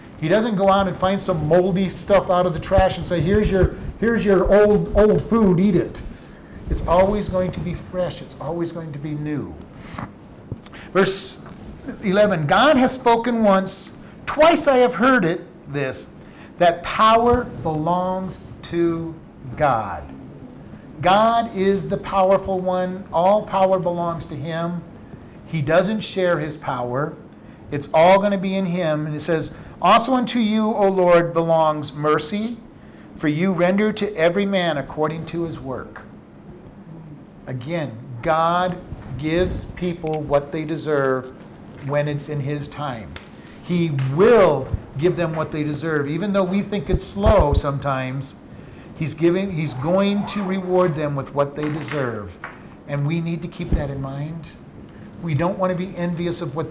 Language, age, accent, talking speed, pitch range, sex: English, 50-69, American, 155 wpm, 150-190 Hz, male